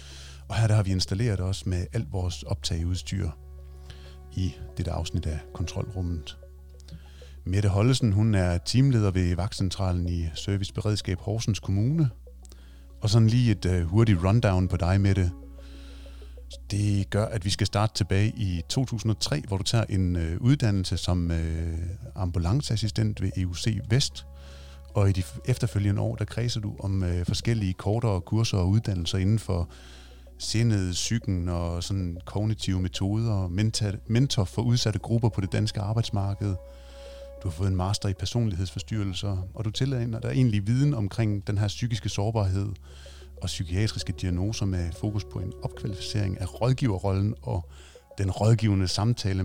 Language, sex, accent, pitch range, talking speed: Danish, male, native, 85-110 Hz, 155 wpm